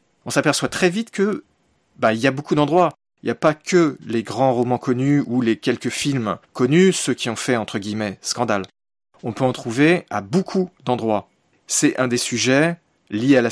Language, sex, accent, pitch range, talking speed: French, male, French, 115-150 Hz, 195 wpm